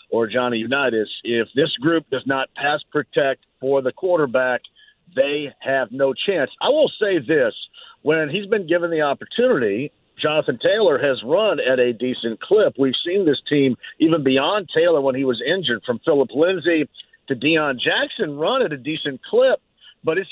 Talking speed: 175 wpm